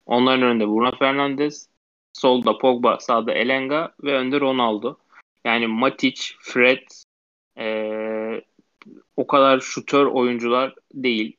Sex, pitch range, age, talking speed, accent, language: male, 115-135 Hz, 20-39, 105 wpm, native, Turkish